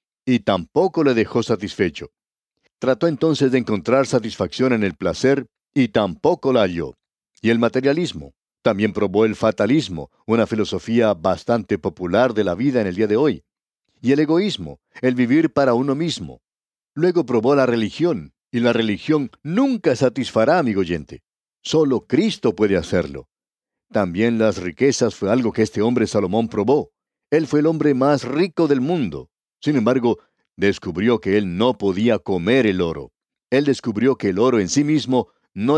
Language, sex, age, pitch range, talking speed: Spanish, male, 60-79, 105-135 Hz, 160 wpm